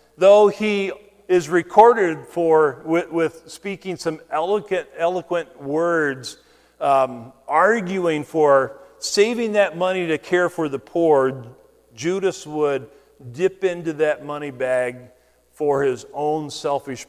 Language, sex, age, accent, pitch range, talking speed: English, male, 50-69, American, 135-175 Hz, 120 wpm